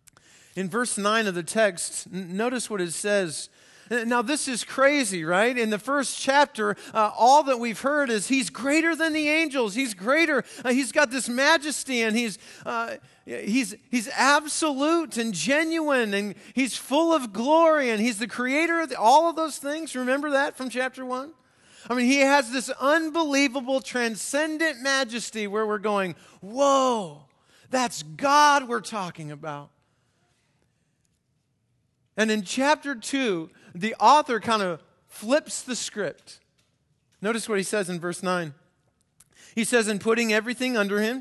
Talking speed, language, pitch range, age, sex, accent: 150 wpm, English, 190-270 Hz, 40-59, male, American